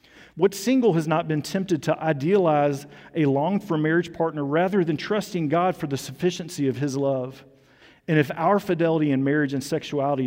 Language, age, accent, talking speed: English, 40-59, American, 180 wpm